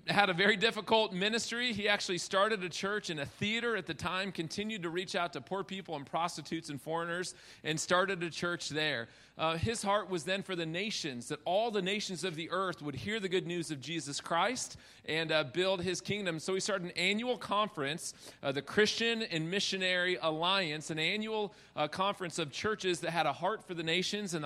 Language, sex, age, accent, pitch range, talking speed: English, male, 40-59, American, 160-200 Hz, 210 wpm